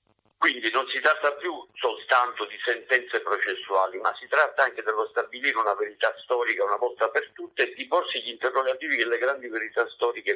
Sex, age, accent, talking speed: male, 50-69, native, 185 wpm